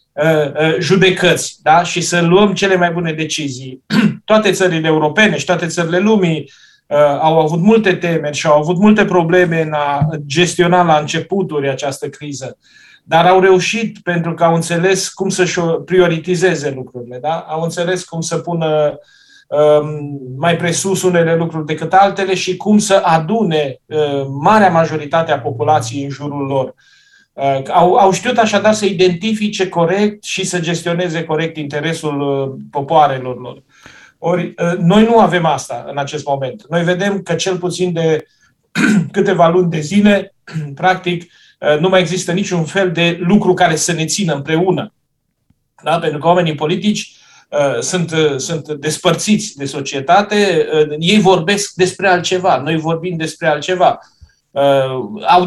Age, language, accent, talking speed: 30-49, Romanian, native, 140 wpm